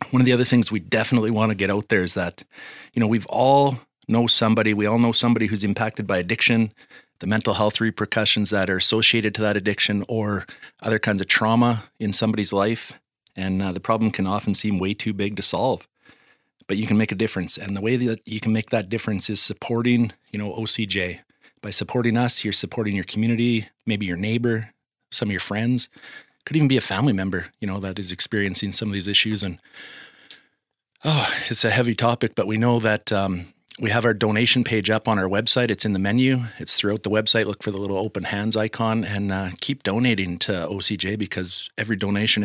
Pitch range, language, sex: 100-115 Hz, English, male